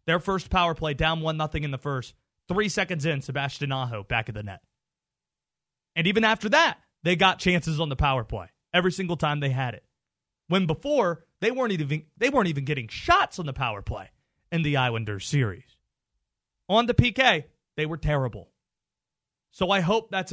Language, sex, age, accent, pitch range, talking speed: English, male, 30-49, American, 140-190 Hz, 190 wpm